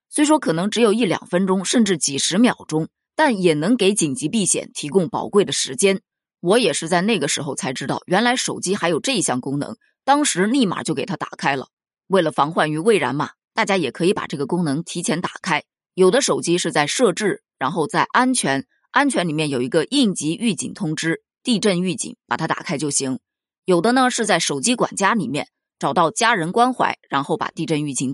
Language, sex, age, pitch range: Chinese, female, 20-39, 155-230 Hz